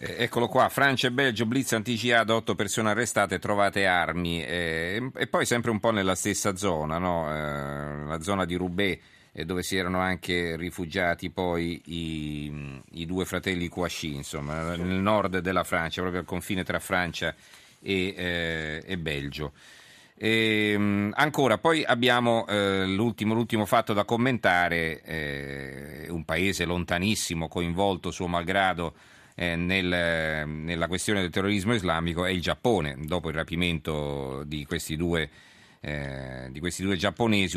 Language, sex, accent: Italian, male, native